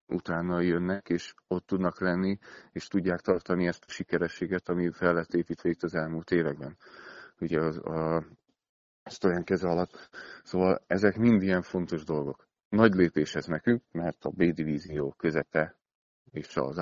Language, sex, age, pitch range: Hungarian, male, 40-59, 80-95 Hz